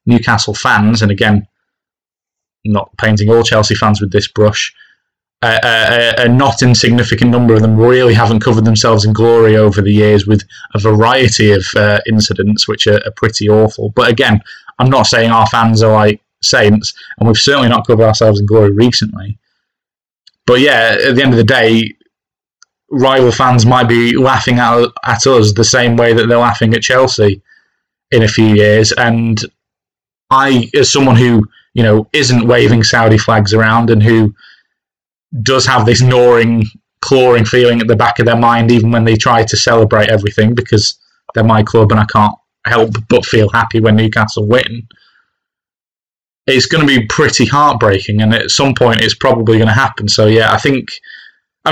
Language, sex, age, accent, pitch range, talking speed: English, male, 20-39, British, 110-120 Hz, 180 wpm